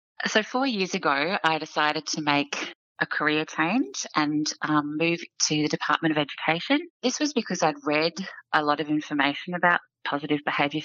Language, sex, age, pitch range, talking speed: English, female, 30-49, 150-175 Hz, 170 wpm